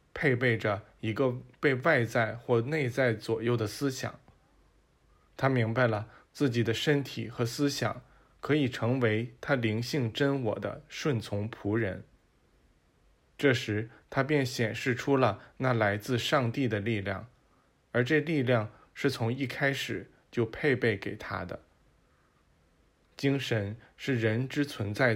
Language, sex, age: Chinese, male, 20-39